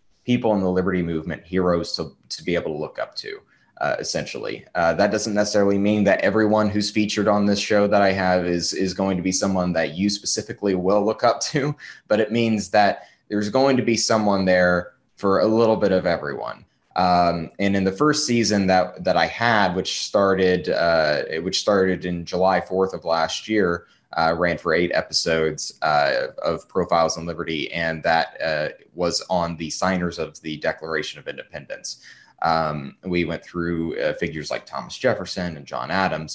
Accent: American